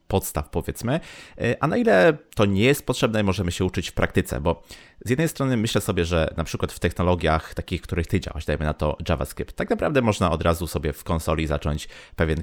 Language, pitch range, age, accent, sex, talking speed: Polish, 80-100 Hz, 30-49, native, male, 210 wpm